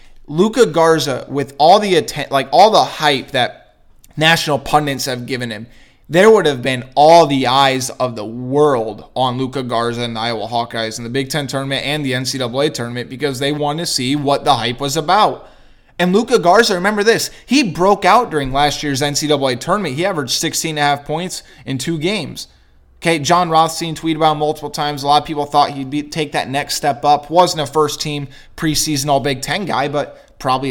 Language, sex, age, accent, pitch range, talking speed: English, male, 20-39, American, 125-155 Hz, 205 wpm